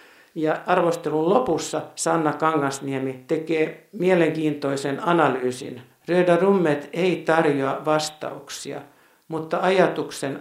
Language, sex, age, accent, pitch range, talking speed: Finnish, male, 60-79, native, 135-165 Hz, 80 wpm